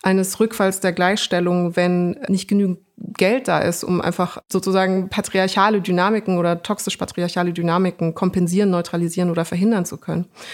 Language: German